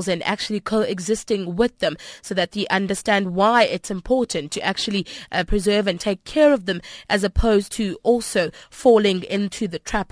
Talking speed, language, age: 170 wpm, English, 20-39